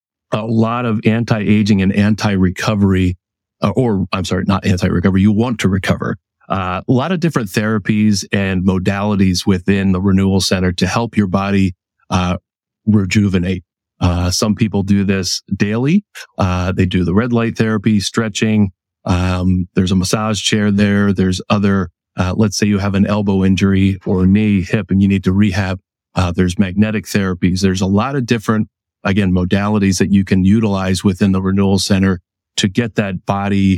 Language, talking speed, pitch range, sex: English, 170 wpm, 95-105 Hz, male